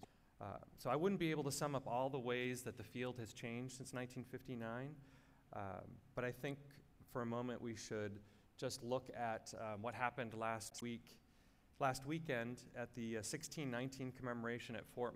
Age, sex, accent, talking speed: 30-49, male, American, 180 wpm